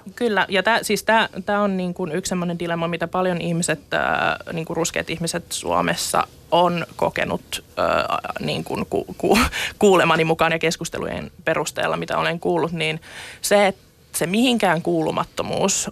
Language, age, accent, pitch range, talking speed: Finnish, 20-39, native, 160-190 Hz, 135 wpm